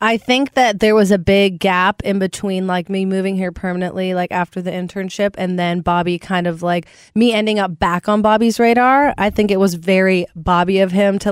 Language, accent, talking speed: English, American, 215 wpm